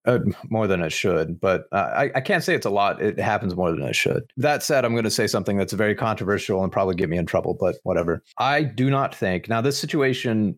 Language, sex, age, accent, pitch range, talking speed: English, male, 30-49, American, 100-125 Hz, 255 wpm